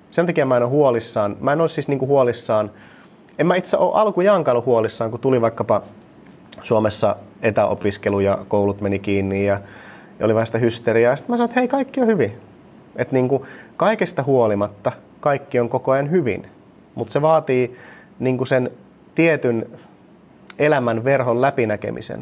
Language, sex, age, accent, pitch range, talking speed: Finnish, male, 30-49, native, 115-150 Hz, 155 wpm